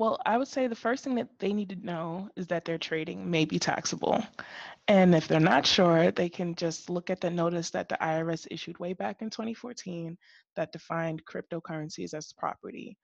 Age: 20-39